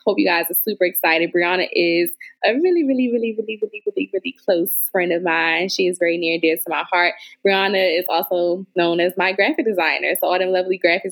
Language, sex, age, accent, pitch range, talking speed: English, female, 20-39, American, 170-210 Hz, 230 wpm